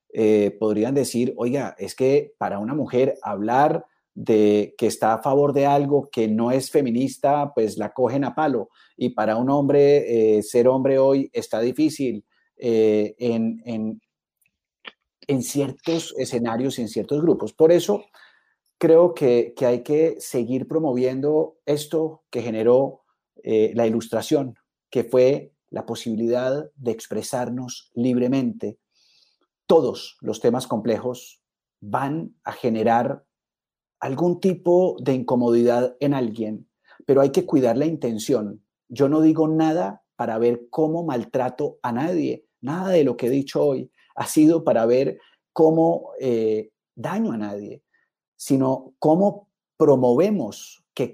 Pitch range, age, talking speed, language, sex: 115-155 Hz, 40-59, 135 wpm, Spanish, male